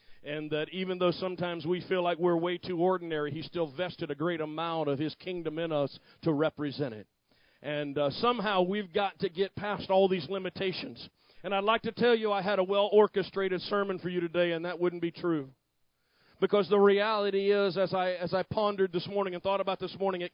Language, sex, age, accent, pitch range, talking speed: English, male, 40-59, American, 170-215 Hz, 210 wpm